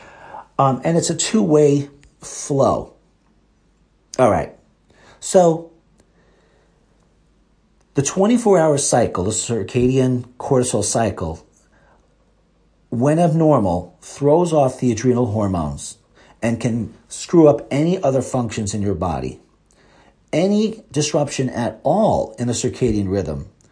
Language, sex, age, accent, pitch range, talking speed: English, male, 50-69, American, 100-150 Hz, 105 wpm